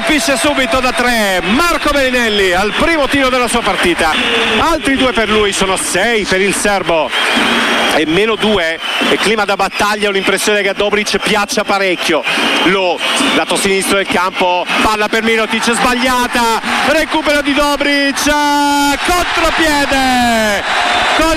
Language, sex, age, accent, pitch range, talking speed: Italian, male, 50-69, native, 220-300 Hz, 140 wpm